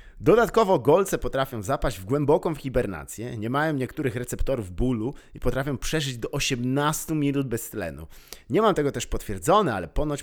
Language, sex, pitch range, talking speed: Polish, male, 100-140 Hz, 160 wpm